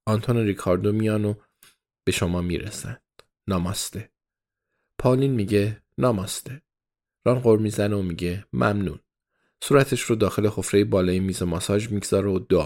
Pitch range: 95-125 Hz